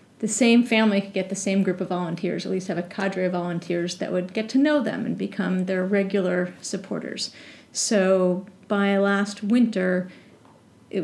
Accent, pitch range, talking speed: American, 190-220 Hz, 180 wpm